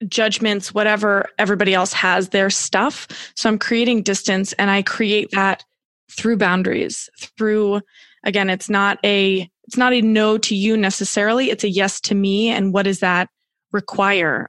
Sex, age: female, 20-39